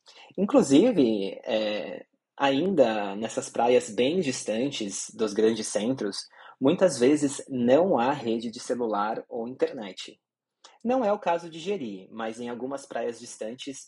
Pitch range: 120-165 Hz